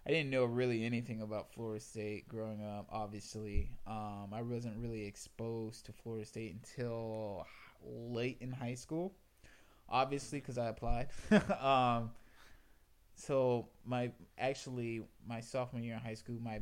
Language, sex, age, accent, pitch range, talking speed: English, male, 20-39, American, 110-130 Hz, 140 wpm